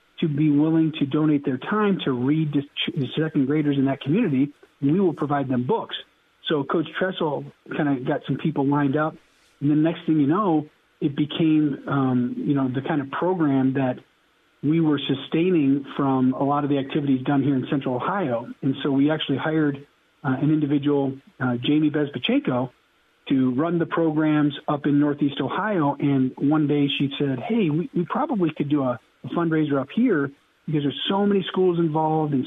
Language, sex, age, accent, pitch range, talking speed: English, male, 40-59, American, 140-160 Hz, 190 wpm